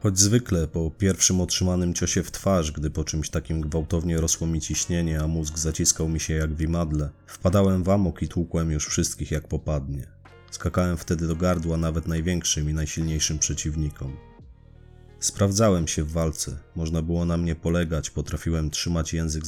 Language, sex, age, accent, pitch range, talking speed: Polish, male, 30-49, native, 80-90 Hz, 165 wpm